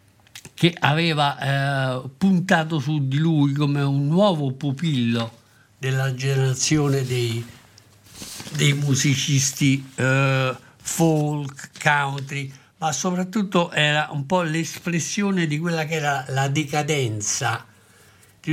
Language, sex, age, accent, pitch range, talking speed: Italian, male, 60-79, native, 125-155 Hz, 105 wpm